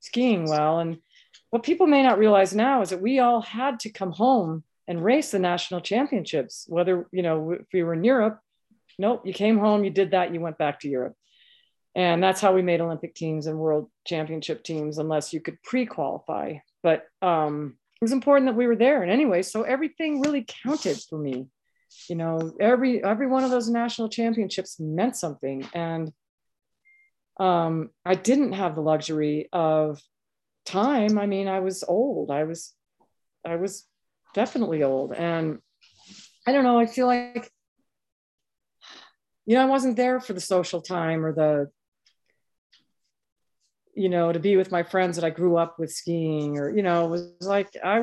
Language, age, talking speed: English, 40-59, 180 wpm